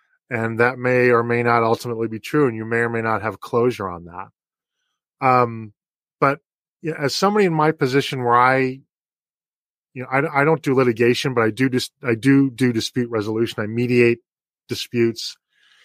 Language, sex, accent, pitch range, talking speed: English, male, American, 115-150 Hz, 185 wpm